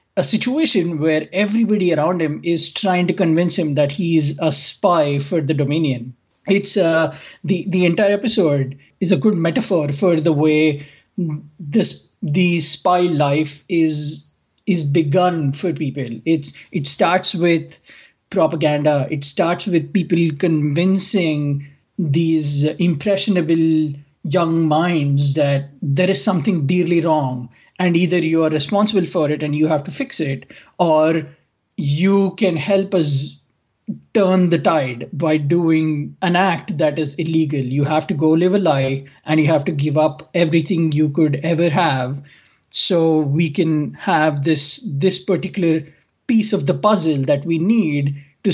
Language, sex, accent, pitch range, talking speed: English, male, Indian, 150-180 Hz, 150 wpm